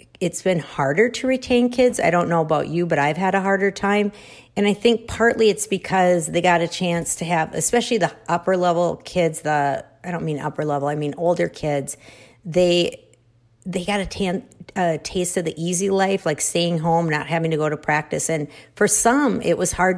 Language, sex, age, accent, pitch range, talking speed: English, female, 50-69, American, 155-195 Hz, 210 wpm